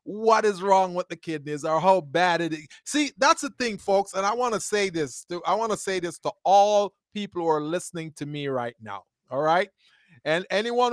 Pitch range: 180-245 Hz